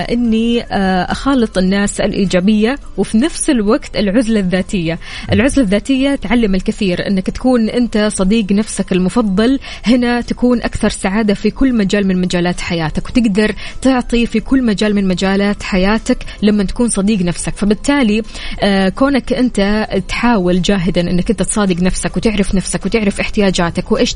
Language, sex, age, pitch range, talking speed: Arabic, female, 20-39, 195-245 Hz, 135 wpm